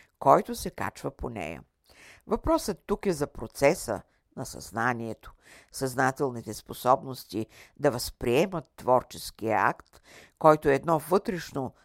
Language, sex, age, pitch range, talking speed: Bulgarian, female, 50-69, 115-175 Hz, 110 wpm